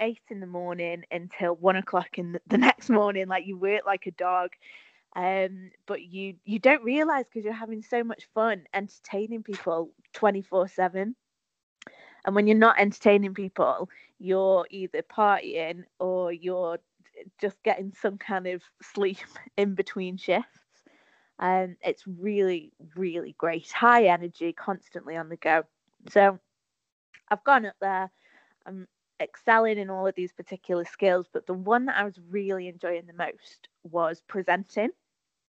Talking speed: 150 wpm